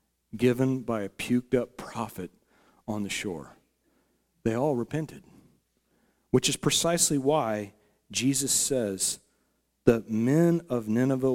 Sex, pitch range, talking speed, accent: male, 110-145 Hz, 110 wpm, American